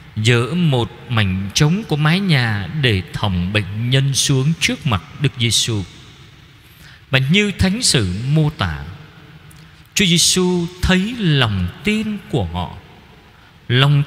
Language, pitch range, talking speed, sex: Vietnamese, 110-160 Hz, 130 wpm, male